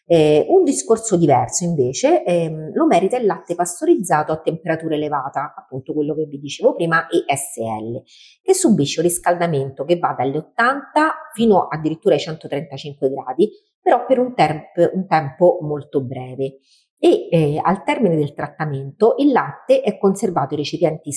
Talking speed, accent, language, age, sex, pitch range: 155 wpm, native, Italian, 40-59, female, 140-235 Hz